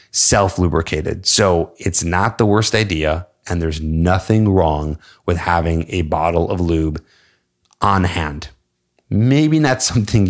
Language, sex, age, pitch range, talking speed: English, male, 30-49, 80-100 Hz, 130 wpm